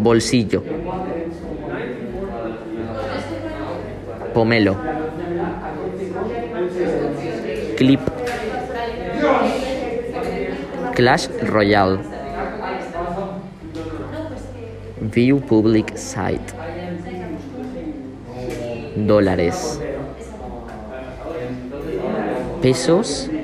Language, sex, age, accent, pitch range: Spanish, male, 20-39, Spanish, 105-155 Hz